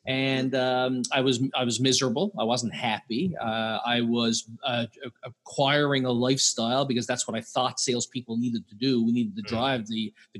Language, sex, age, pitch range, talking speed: English, male, 30-49, 120-140 Hz, 185 wpm